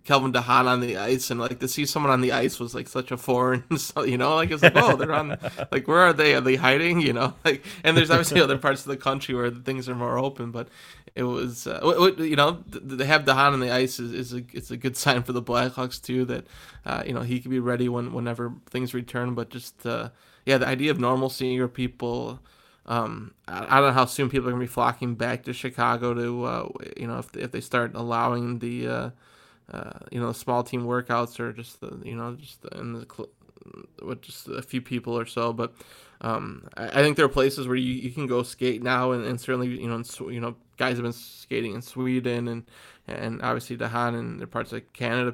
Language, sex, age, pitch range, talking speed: English, male, 20-39, 120-130 Hz, 245 wpm